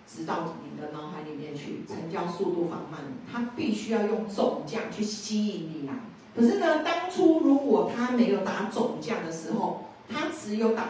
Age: 40-59